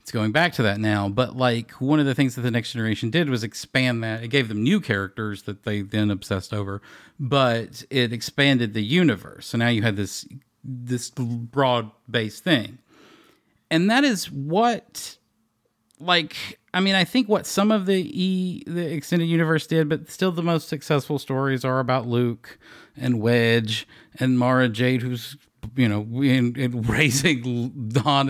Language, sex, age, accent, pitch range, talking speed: English, male, 40-59, American, 115-150 Hz, 175 wpm